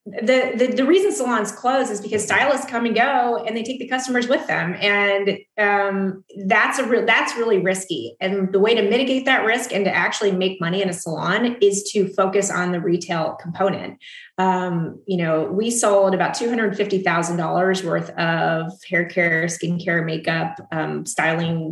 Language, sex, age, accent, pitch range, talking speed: English, female, 30-49, American, 180-220 Hz, 175 wpm